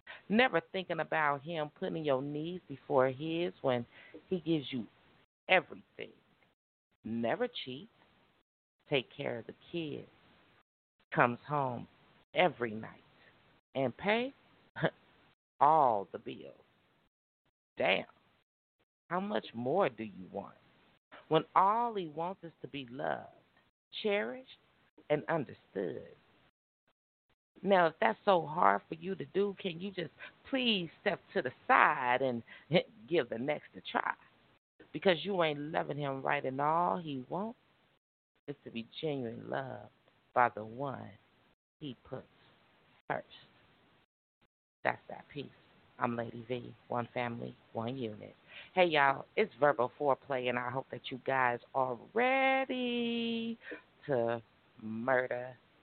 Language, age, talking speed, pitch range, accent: English, 50-69, 125 wpm, 120-180 Hz, American